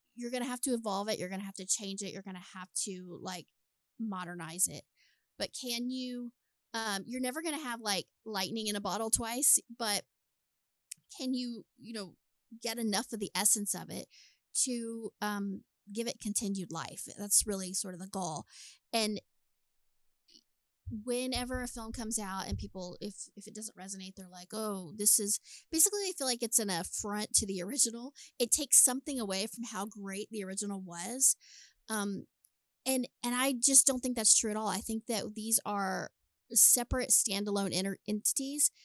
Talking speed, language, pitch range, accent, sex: 185 wpm, English, 195-245 Hz, American, female